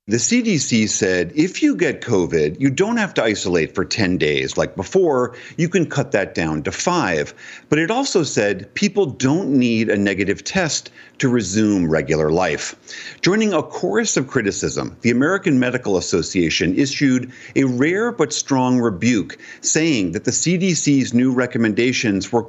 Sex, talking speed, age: male, 160 wpm, 50-69